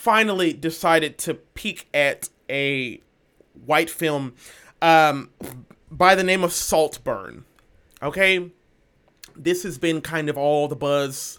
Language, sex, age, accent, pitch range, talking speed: English, male, 30-49, American, 150-200 Hz, 120 wpm